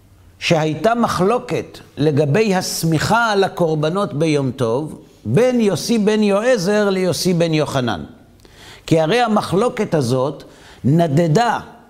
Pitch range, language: 140-205 Hz, Hebrew